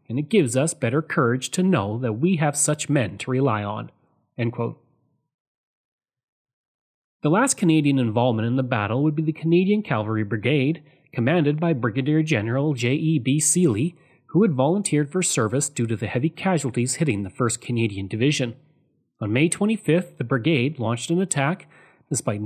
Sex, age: male, 30-49